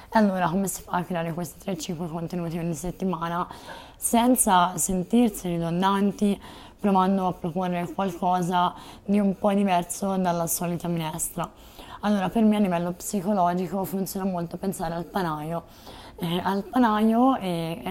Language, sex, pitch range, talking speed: Italian, female, 170-195 Hz, 135 wpm